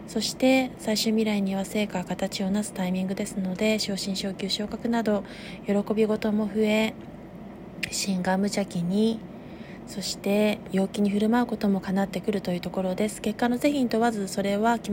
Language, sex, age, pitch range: Japanese, female, 20-39, 190-225 Hz